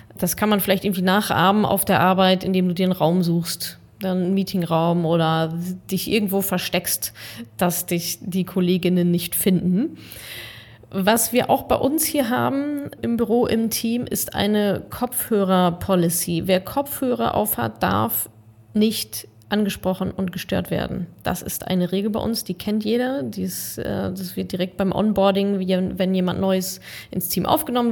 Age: 30-49